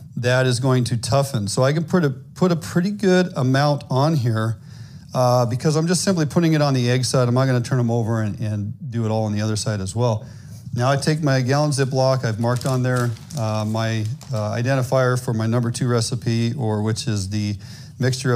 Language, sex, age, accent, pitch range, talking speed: English, male, 40-59, American, 120-145 Hz, 225 wpm